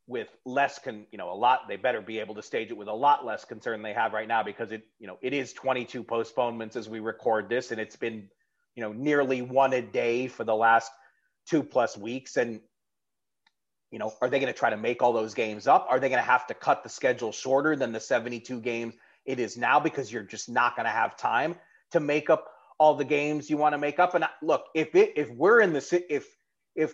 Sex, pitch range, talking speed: male, 115-150 Hz, 245 wpm